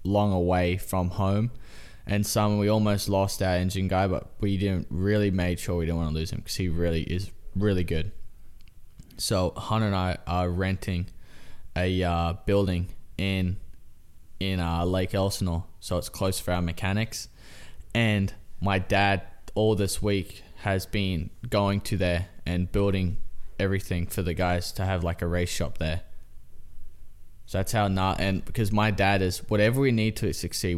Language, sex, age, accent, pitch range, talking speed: English, male, 20-39, Australian, 90-105 Hz, 175 wpm